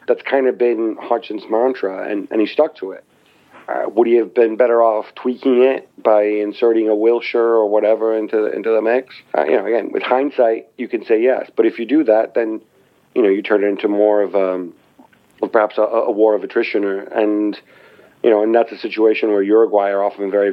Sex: male